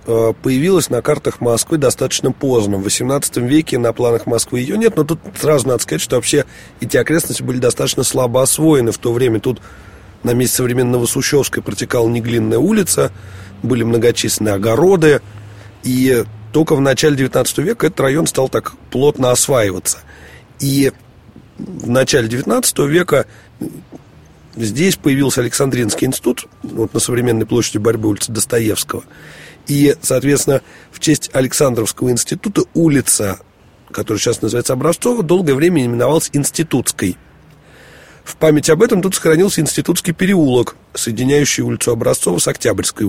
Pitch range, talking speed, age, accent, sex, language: 115-150 Hz, 135 wpm, 30-49, native, male, Russian